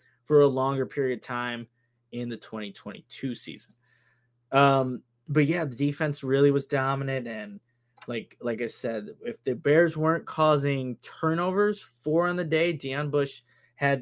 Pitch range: 120-150 Hz